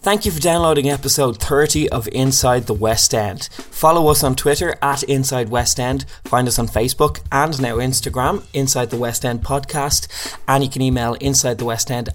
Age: 20-39